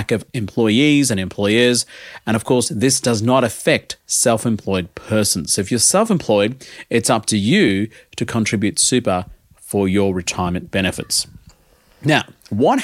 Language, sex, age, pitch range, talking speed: English, male, 30-49, 105-145 Hz, 140 wpm